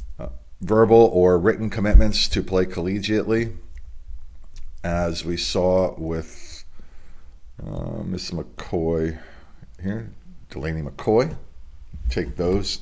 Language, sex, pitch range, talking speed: English, male, 75-100 Hz, 90 wpm